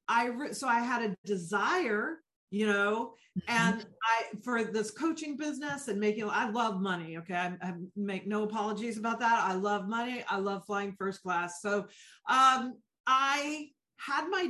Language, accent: English, American